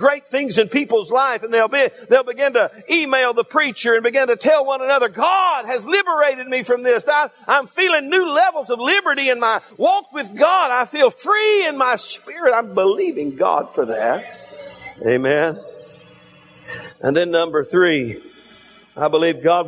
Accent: American